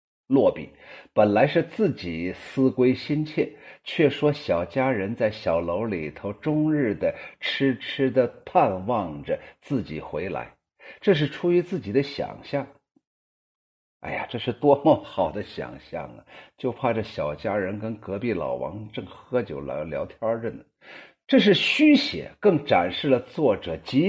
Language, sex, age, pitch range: Chinese, male, 50-69, 110-150 Hz